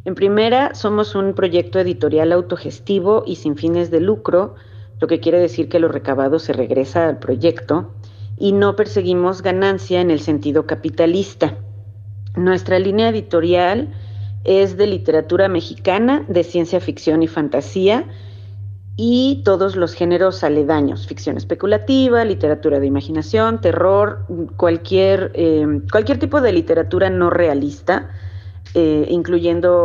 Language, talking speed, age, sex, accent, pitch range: Spanish, 130 wpm, 40-59, female, Mexican, 140-185 Hz